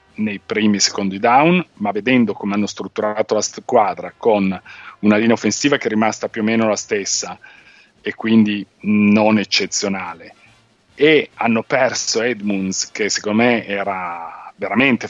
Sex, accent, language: male, native, Italian